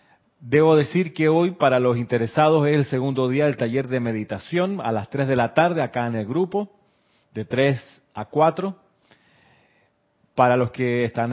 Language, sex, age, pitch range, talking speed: Spanish, male, 40-59, 115-145 Hz, 175 wpm